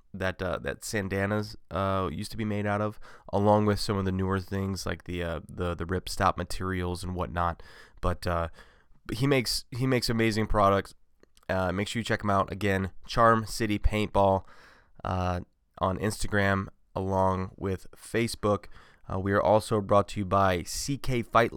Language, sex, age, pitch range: English, male, 20-39, 90-105 Hz